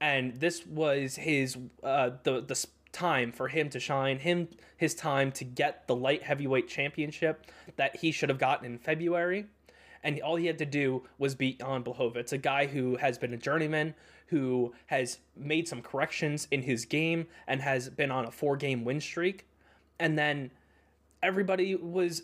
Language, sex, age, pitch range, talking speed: English, male, 20-39, 130-155 Hz, 180 wpm